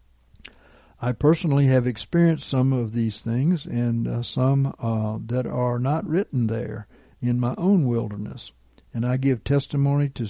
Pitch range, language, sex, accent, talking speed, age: 110-140 Hz, English, male, American, 150 wpm, 60-79